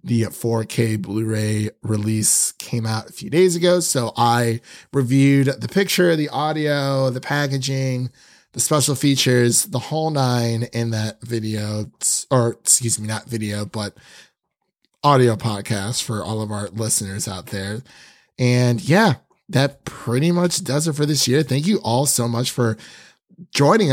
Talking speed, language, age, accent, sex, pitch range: 150 wpm, English, 30-49, American, male, 110-145 Hz